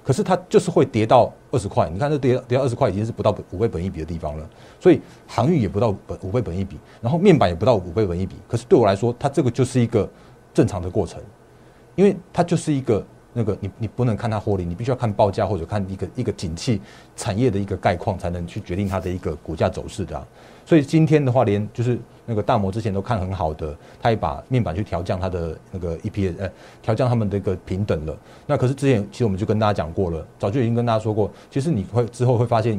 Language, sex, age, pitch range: Chinese, male, 30-49, 95-125 Hz